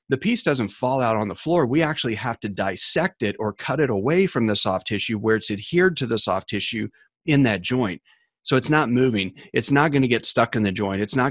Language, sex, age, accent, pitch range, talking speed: English, male, 30-49, American, 105-135 Hz, 250 wpm